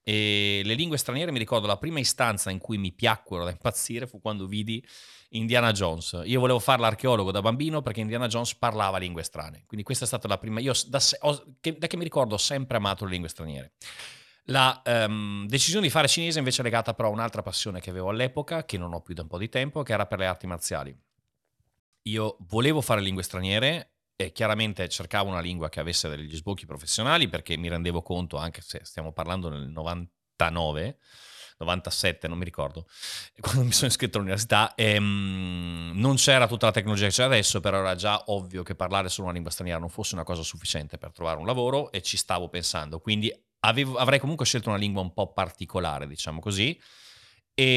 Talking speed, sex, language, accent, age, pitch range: 200 wpm, male, Italian, native, 30-49, 90-125 Hz